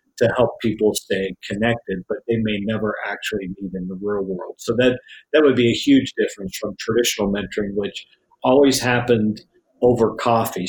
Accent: American